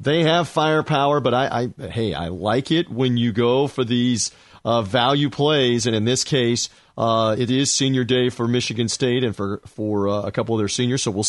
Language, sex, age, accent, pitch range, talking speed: English, male, 40-59, American, 125-155 Hz, 220 wpm